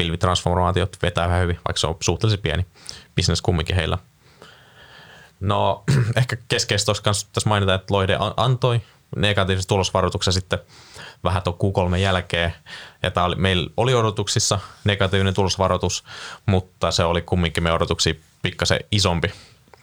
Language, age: Finnish, 20-39